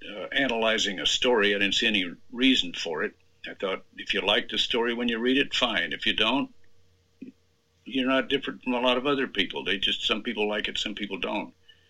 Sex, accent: male, American